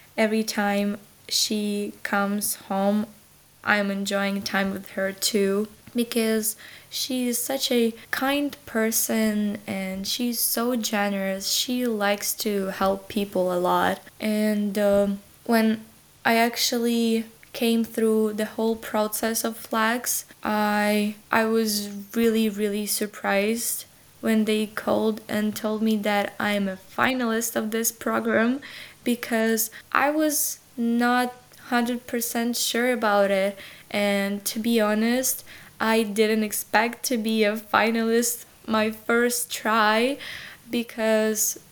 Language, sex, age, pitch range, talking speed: English, female, 10-29, 205-235 Hz, 115 wpm